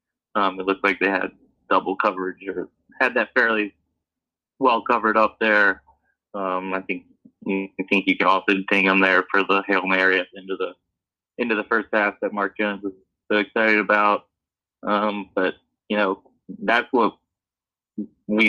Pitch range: 95-105 Hz